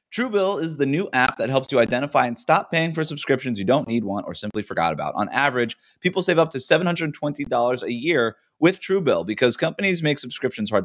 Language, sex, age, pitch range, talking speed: English, male, 30-49, 105-160 Hz, 210 wpm